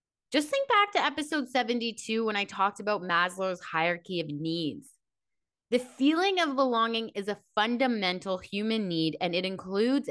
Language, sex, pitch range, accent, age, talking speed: English, female, 180-255 Hz, American, 20-39, 155 wpm